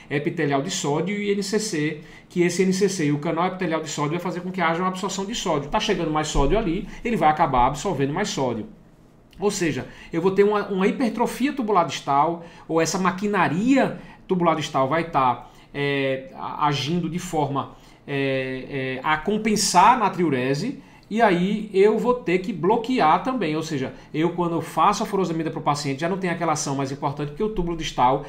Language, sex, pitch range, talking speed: Portuguese, male, 140-185 Hz, 195 wpm